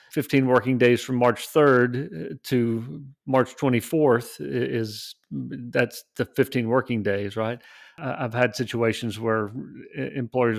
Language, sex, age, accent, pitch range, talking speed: English, male, 40-59, American, 115-125 Hz, 120 wpm